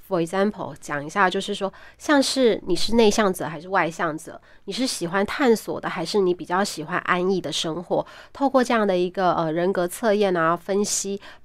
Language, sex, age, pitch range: Chinese, female, 20-39, 175-220 Hz